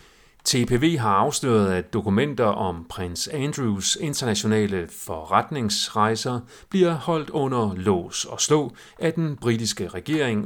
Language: Danish